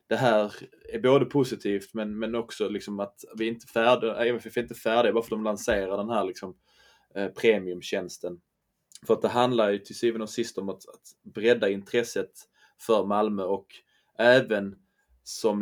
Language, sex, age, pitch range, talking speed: Swedish, male, 20-39, 105-125 Hz, 180 wpm